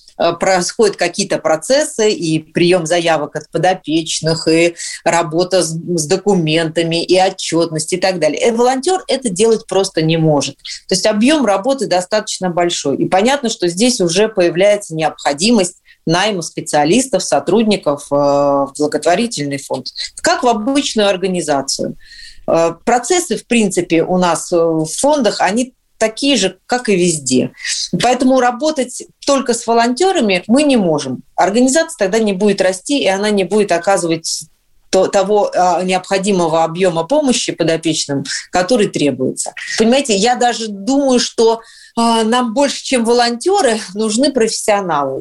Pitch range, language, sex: 170-235 Hz, Russian, female